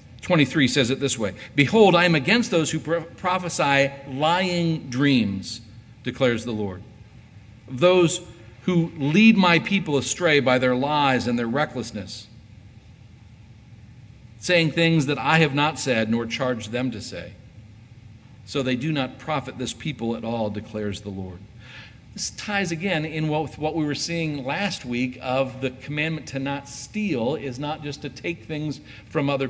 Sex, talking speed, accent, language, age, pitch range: male, 155 wpm, American, English, 50-69, 115-155 Hz